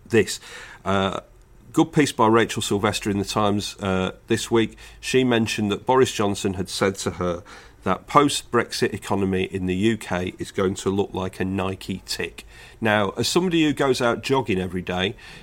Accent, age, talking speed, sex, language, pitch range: British, 40-59, 180 wpm, male, English, 100-135 Hz